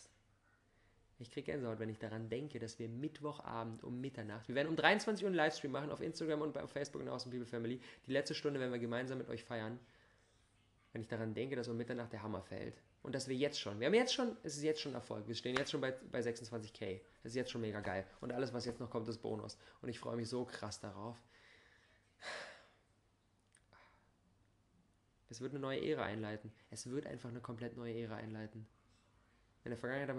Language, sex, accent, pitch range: German, male, German, 110-125 Hz